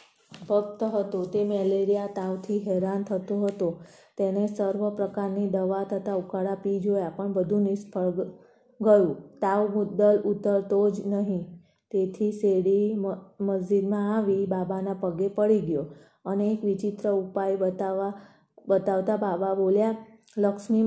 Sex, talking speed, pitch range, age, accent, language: female, 100 wpm, 195-210 Hz, 20-39, native, Gujarati